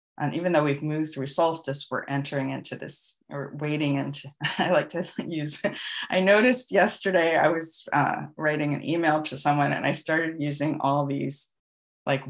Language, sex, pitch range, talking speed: English, female, 140-180 Hz, 175 wpm